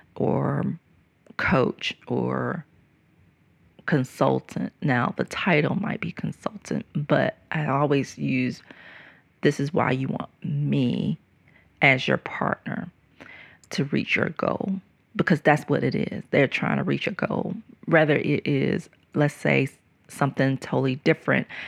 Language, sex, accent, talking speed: English, female, American, 125 wpm